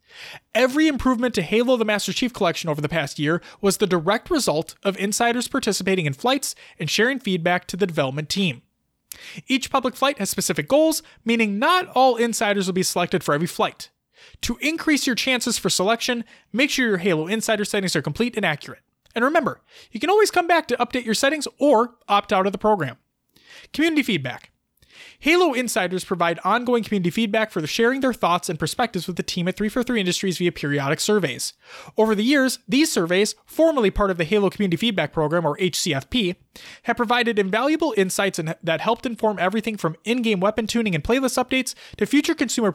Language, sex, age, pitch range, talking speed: English, male, 30-49, 180-250 Hz, 190 wpm